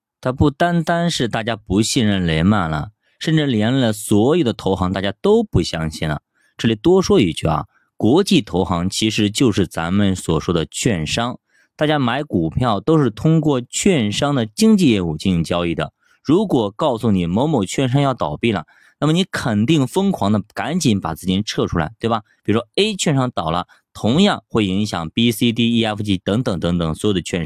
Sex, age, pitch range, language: male, 20-39, 90-130 Hz, Chinese